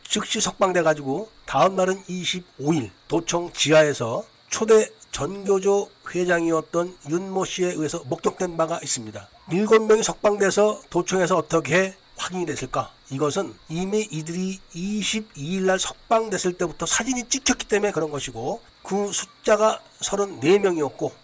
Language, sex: Korean, male